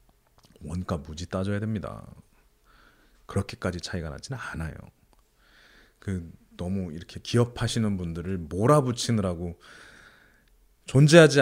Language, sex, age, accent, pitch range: Korean, male, 30-49, native, 90-115 Hz